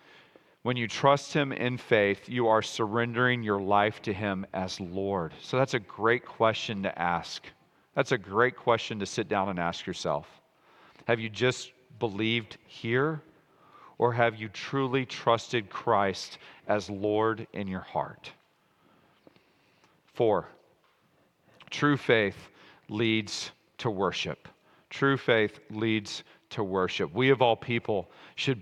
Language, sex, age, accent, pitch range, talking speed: English, male, 40-59, American, 100-125 Hz, 135 wpm